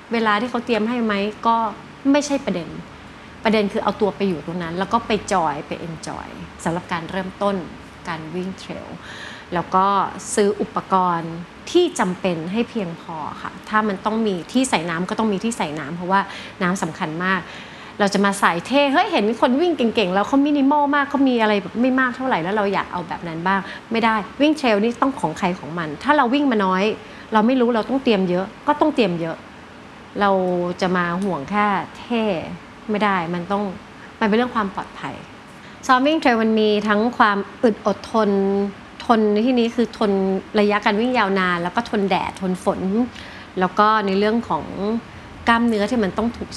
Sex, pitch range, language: female, 185-230 Hz, Thai